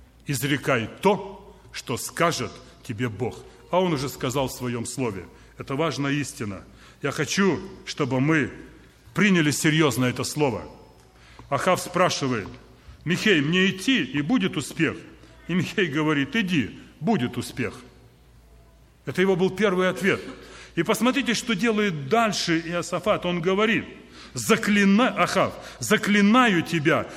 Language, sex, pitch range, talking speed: Russian, male, 140-210 Hz, 120 wpm